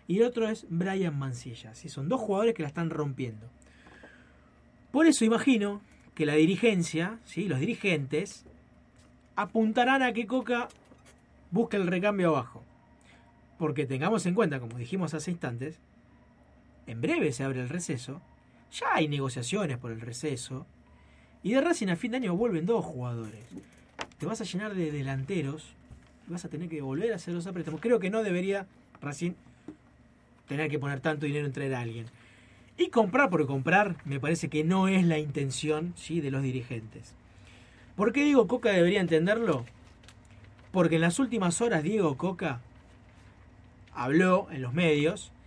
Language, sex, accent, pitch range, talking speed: Spanish, male, Argentinian, 135-200 Hz, 160 wpm